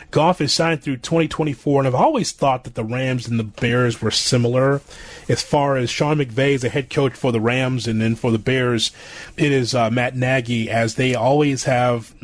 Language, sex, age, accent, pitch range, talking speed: English, male, 30-49, American, 125-155 Hz, 210 wpm